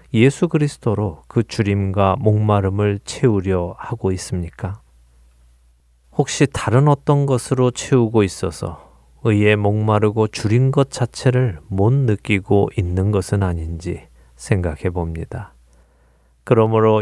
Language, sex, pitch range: Korean, male, 85-115 Hz